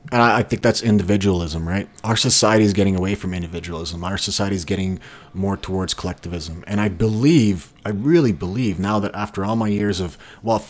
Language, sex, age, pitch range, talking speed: English, male, 30-49, 95-115 Hz, 190 wpm